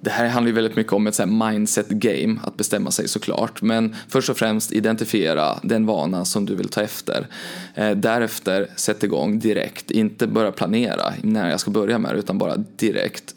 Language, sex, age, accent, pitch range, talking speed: Swedish, male, 20-39, native, 105-120 Hz, 180 wpm